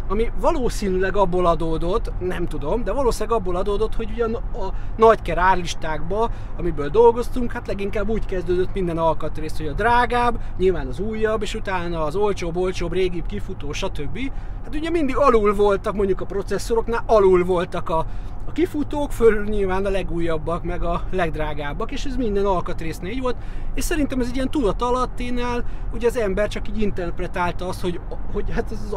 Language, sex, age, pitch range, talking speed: Hungarian, male, 30-49, 175-245 Hz, 170 wpm